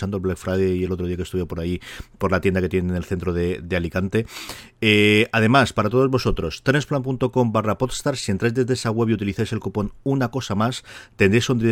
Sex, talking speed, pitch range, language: male, 220 wpm, 90-120 Hz, Spanish